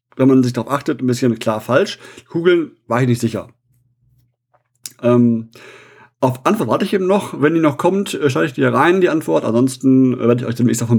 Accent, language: German, German